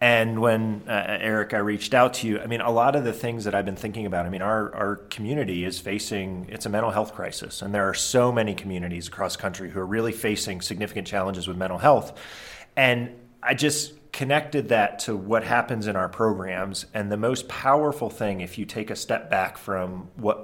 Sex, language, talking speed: male, English, 220 wpm